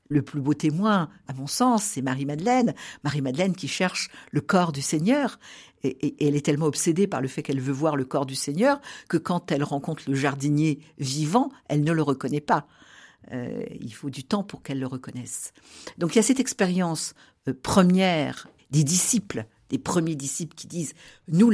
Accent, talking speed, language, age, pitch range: French, 195 wpm, French, 60-79, 145-200 Hz